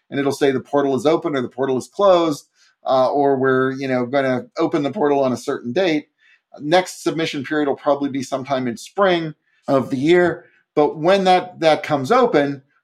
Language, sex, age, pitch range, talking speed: English, male, 40-59, 120-145 Hz, 205 wpm